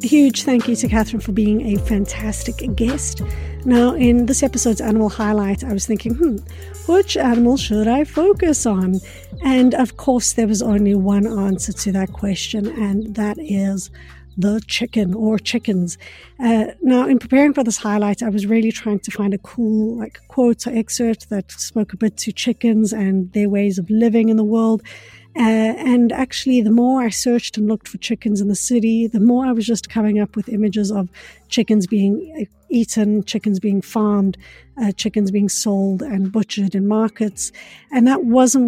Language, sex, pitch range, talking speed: English, female, 205-235 Hz, 185 wpm